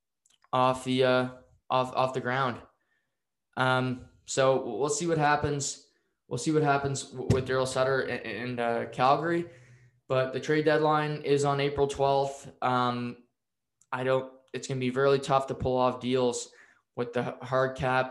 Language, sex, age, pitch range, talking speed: English, male, 20-39, 125-135 Hz, 160 wpm